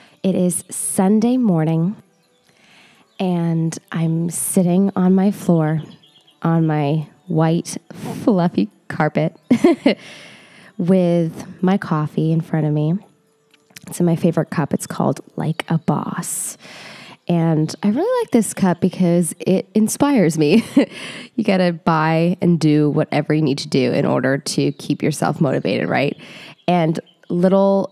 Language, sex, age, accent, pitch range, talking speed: English, female, 20-39, American, 160-195 Hz, 130 wpm